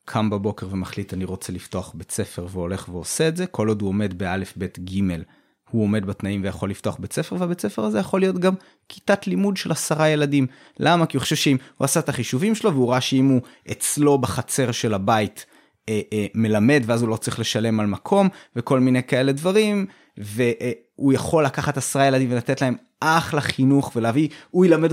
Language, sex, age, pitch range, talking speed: Hebrew, male, 20-39, 115-150 Hz, 195 wpm